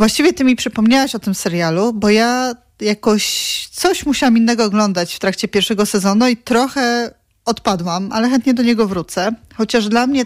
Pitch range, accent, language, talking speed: 195-240 Hz, native, Polish, 170 wpm